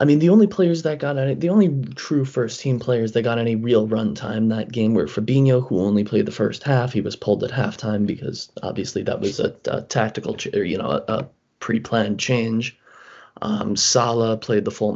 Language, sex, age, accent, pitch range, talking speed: English, male, 20-39, American, 105-130 Hz, 210 wpm